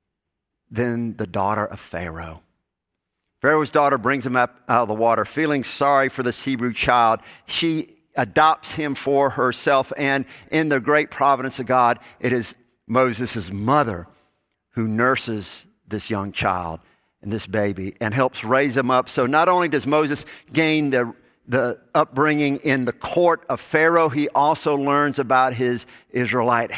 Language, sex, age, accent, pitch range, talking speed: English, male, 50-69, American, 115-150 Hz, 155 wpm